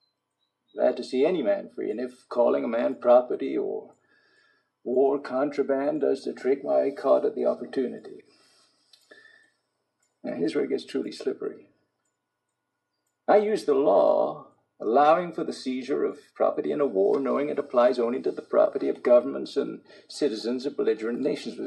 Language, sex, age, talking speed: English, male, 50-69, 160 wpm